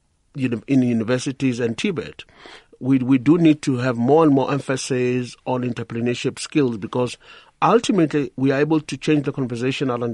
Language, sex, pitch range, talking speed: English, male, 125-155 Hz, 170 wpm